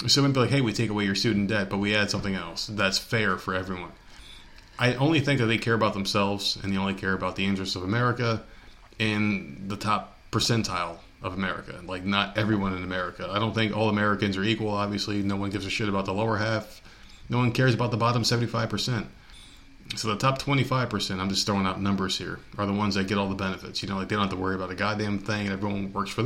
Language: English